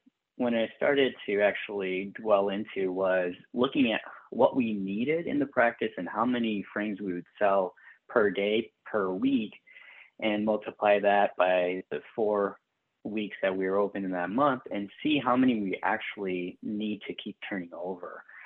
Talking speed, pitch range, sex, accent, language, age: 170 wpm, 100-125 Hz, male, American, English, 30-49